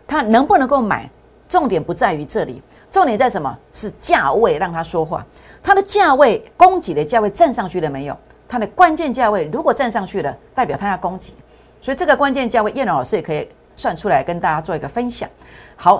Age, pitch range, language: 50-69, 175-265 Hz, Chinese